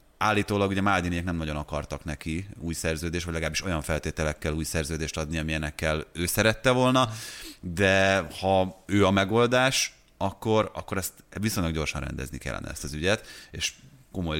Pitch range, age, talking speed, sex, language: 80-100 Hz, 30-49, 155 wpm, male, Hungarian